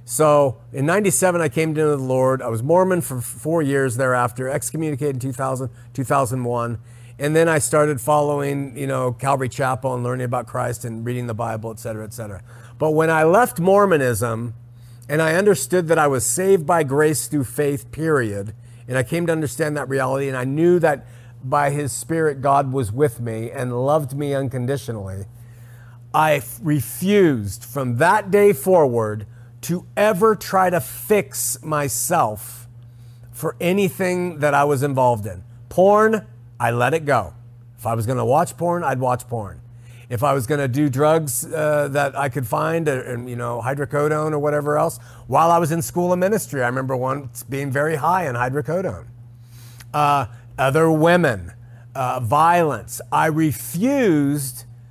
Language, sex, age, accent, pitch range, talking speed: English, male, 50-69, American, 120-155 Hz, 170 wpm